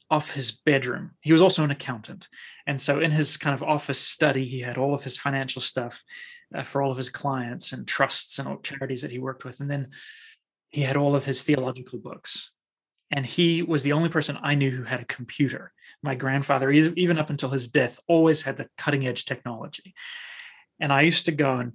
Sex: male